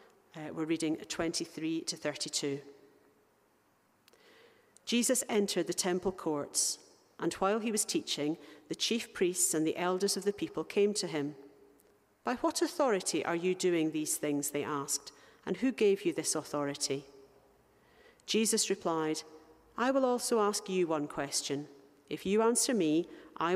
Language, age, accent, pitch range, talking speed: English, 50-69, British, 150-200 Hz, 150 wpm